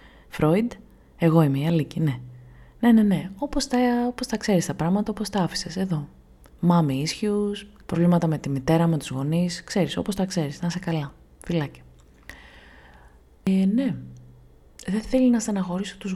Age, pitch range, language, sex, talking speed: 20-39, 125-180 Hz, Greek, female, 165 wpm